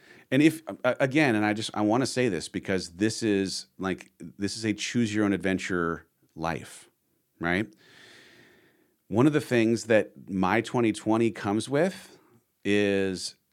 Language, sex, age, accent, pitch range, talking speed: English, male, 40-59, American, 95-115 Hz, 150 wpm